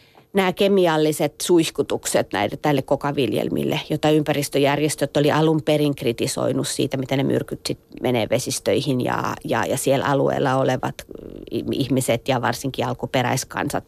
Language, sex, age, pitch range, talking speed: Finnish, female, 30-49, 145-170 Hz, 125 wpm